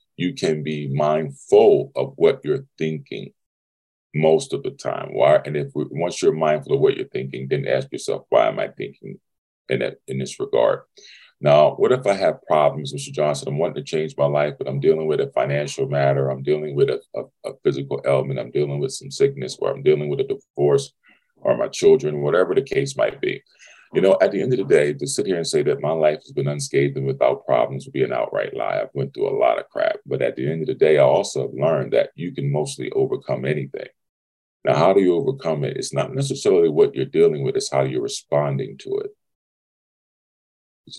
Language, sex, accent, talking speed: English, male, American, 225 wpm